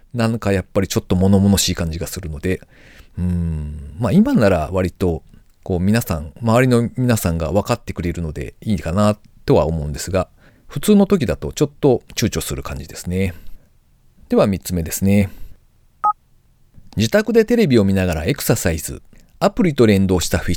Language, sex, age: Japanese, male, 40-59